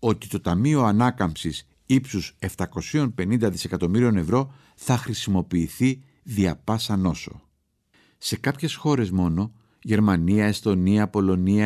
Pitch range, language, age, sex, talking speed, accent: 100-125 Hz, Greek, 50-69, male, 105 wpm, native